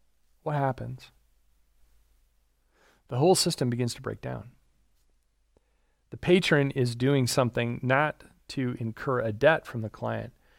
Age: 40-59